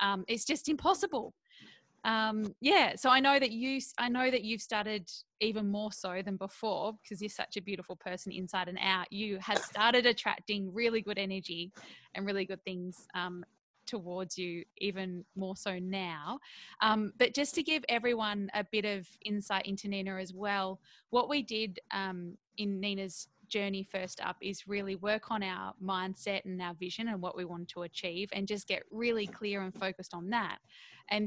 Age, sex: 20-39, female